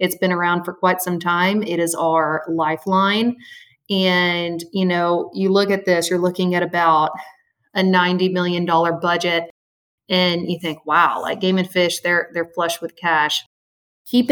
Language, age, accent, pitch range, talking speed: English, 30-49, American, 170-190 Hz, 170 wpm